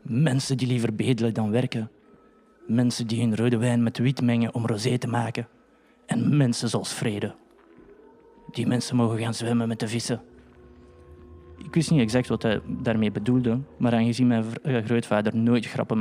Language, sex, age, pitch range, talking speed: Dutch, male, 20-39, 115-135 Hz, 165 wpm